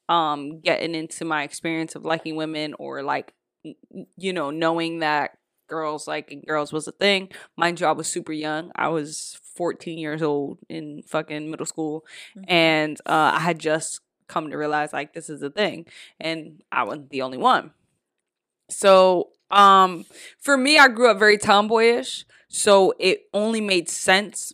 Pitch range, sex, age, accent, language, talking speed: 160-200 Hz, female, 20-39, American, English, 165 wpm